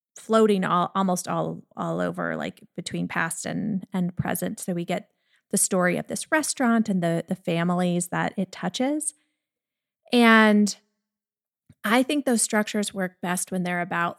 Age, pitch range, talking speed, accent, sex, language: 30-49, 180-225 Hz, 155 wpm, American, female, English